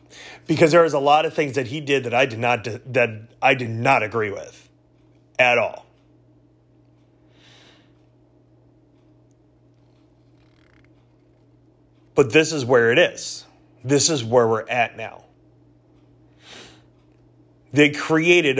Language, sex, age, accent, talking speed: English, male, 30-49, American, 115 wpm